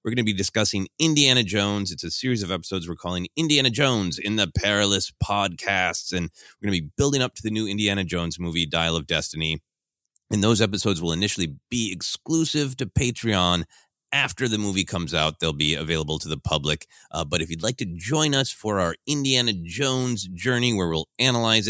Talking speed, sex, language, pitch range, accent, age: 200 wpm, male, English, 80-110 Hz, American, 30-49